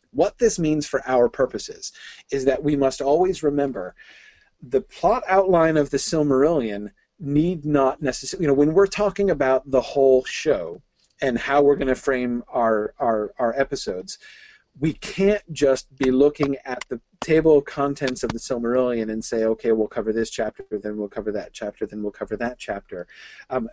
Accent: American